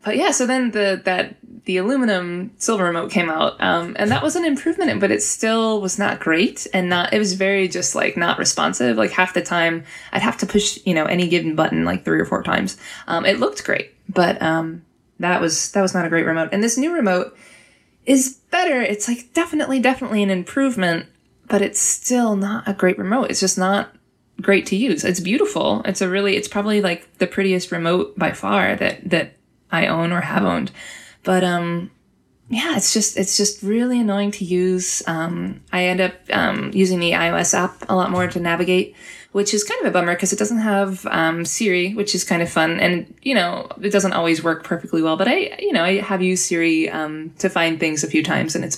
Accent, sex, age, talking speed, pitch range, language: American, female, 20-39, 220 wpm, 165-210 Hz, English